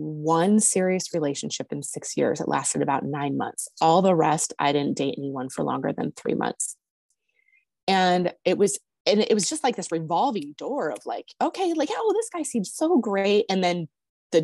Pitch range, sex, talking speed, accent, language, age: 165-235 Hz, female, 195 wpm, American, English, 20-39